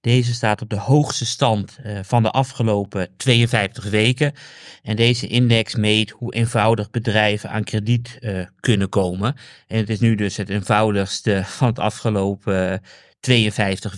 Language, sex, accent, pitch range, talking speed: Dutch, male, Dutch, 105-125 Hz, 140 wpm